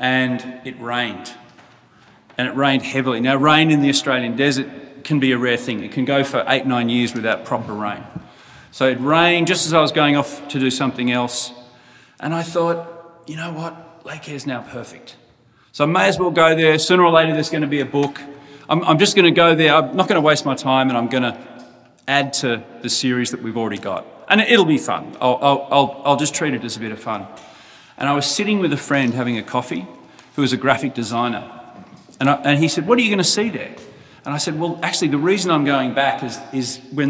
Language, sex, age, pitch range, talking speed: English, male, 40-59, 125-150 Hz, 235 wpm